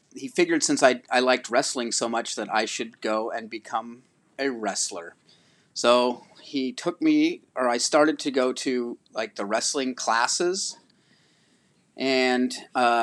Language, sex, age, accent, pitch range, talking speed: English, male, 30-49, American, 115-140 Hz, 145 wpm